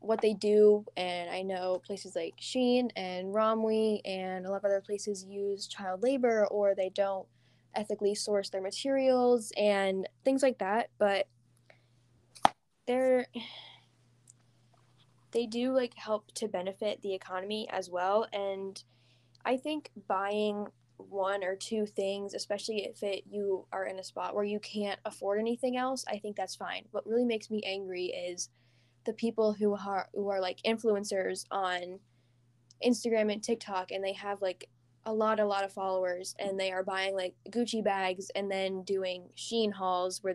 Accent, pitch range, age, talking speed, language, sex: American, 185-220 Hz, 10-29, 165 wpm, English, female